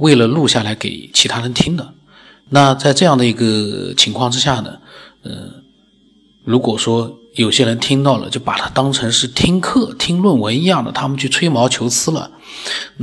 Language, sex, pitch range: Chinese, male, 115-135 Hz